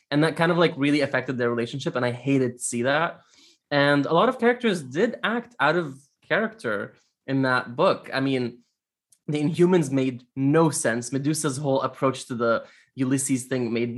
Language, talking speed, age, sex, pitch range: English, 185 wpm, 20-39, male, 125-150 Hz